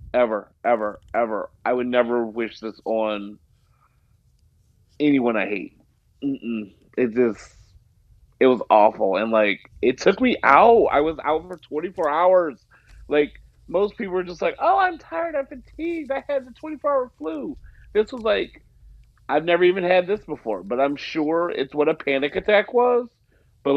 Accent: American